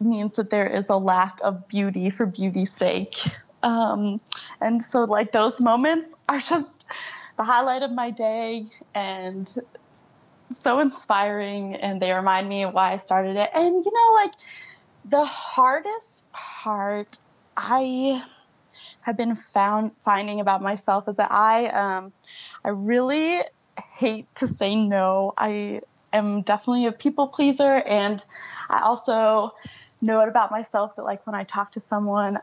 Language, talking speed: English, 150 wpm